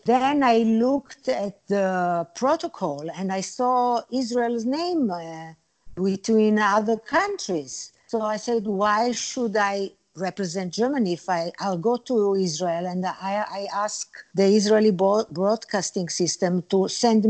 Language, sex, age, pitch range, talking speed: English, female, 50-69, 185-235 Hz, 140 wpm